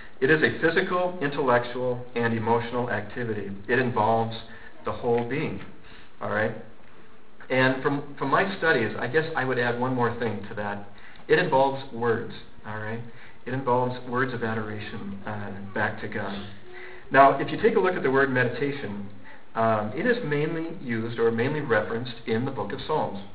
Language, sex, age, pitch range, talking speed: English, male, 50-69, 110-130 Hz, 170 wpm